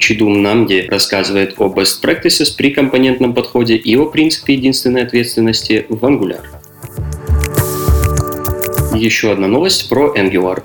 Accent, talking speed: native, 120 wpm